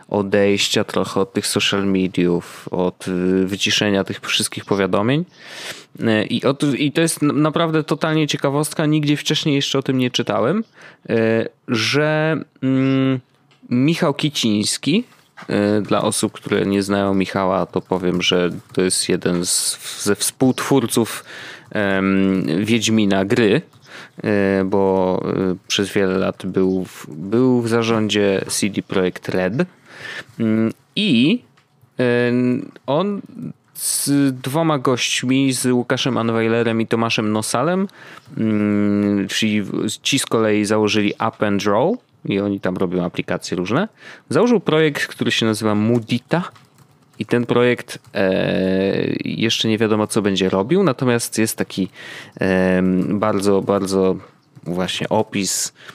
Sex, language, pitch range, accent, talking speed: male, Polish, 100-135 Hz, native, 115 wpm